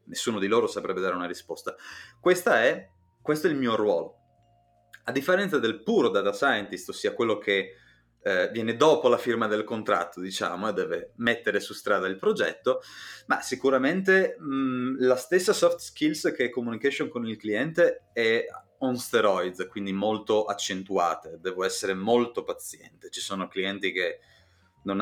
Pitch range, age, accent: 105-155 Hz, 30-49, native